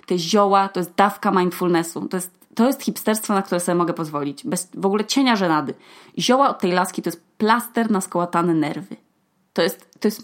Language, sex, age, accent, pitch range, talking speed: Polish, female, 20-39, native, 180-240 Hz, 195 wpm